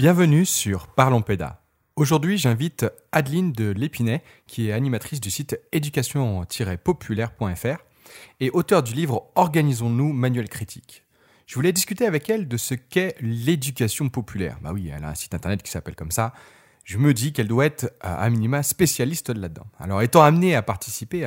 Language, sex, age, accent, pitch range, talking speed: French, male, 30-49, French, 95-140 Hz, 165 wpm